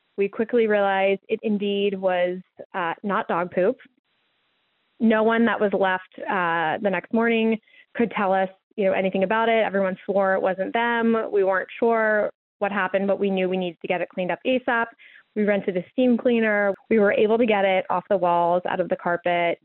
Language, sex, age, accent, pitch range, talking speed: English, female, 20-39, American, 185-220 Hz, 200 wpm